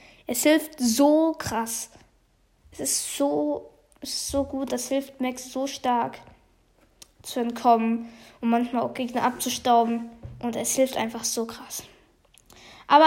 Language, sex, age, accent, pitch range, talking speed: German, female, 10-29, German, 235-285 Hz, 130 wpm